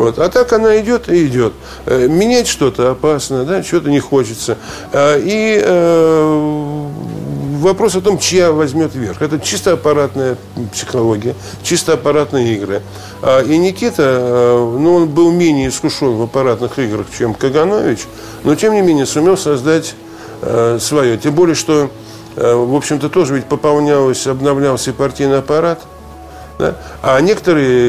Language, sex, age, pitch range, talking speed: Russian, male, 50-69, 120-155 Hz, 135 wpm